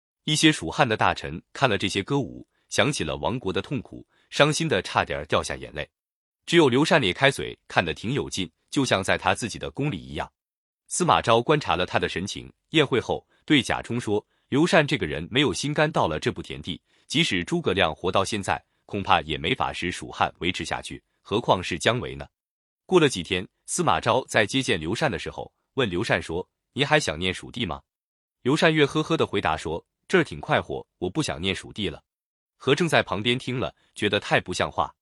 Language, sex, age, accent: Chinese, male, 20-39, native